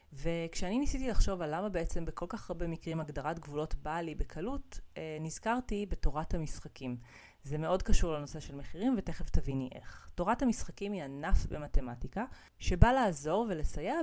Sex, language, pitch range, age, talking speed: female, Hebrew, 150-205 Hz, 30-49, 150 wpm